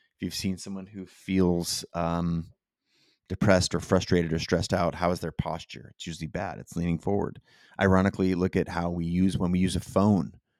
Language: English